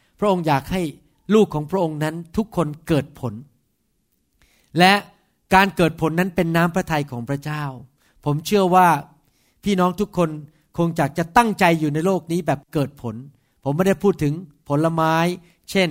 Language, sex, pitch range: Thai, male, 145-190 Hz